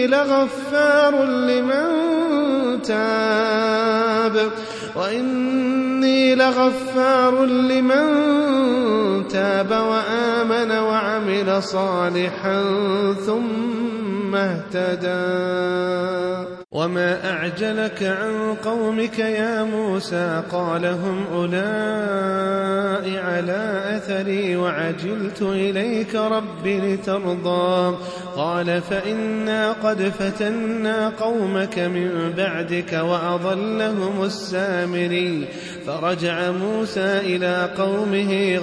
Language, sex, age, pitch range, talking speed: Arabic, male, 30-49, 180-220 Hz, 60 wpm